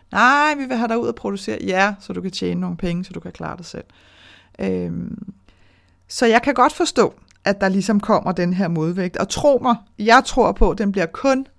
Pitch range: 175-215 Hz